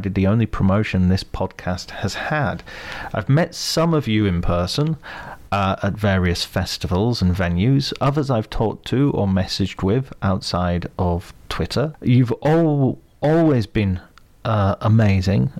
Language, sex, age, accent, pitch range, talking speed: English, male, 40-59, British, 95-120 Hz, 140 wpm